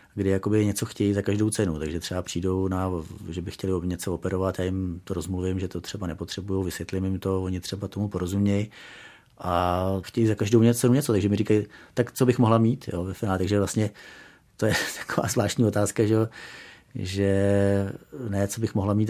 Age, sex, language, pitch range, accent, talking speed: 30-49, male, Czech, 90-105 Hz, native, 200 wpm